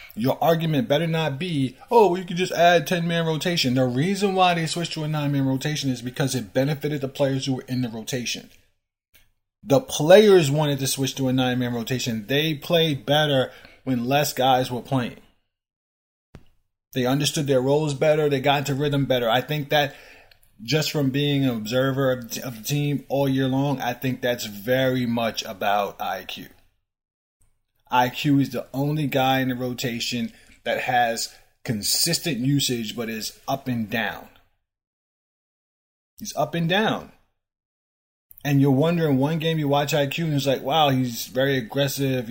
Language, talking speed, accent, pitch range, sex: English, 165 wpm, American, 120-145 Hz, male